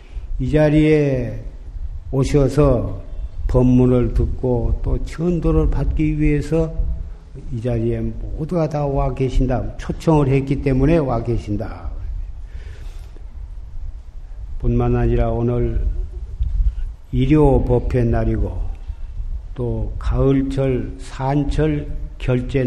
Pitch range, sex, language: 85-130 Hz, male, Korean